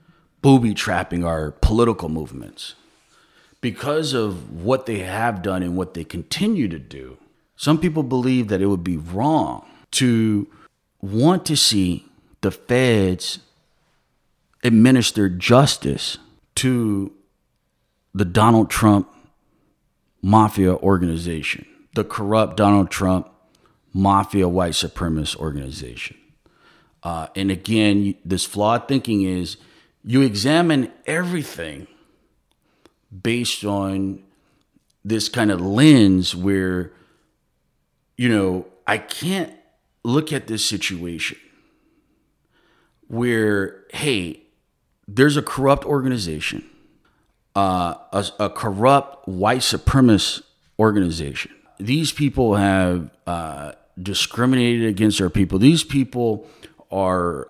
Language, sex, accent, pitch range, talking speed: English, male, American, 95-125 Hz, 100 wpm